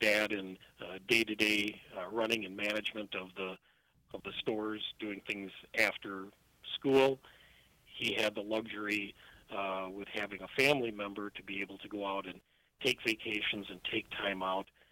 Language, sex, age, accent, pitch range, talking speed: English, male, 40-59, American, 105-120 Hz, 160 wpm